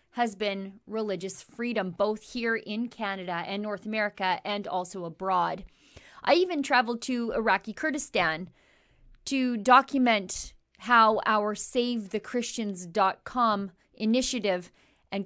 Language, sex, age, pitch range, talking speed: English, female, 30-49, 195-250 Hz, 105 wpm